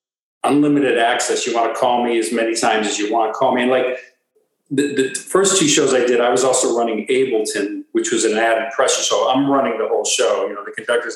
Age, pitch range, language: 50-69, 120-190 Hz, English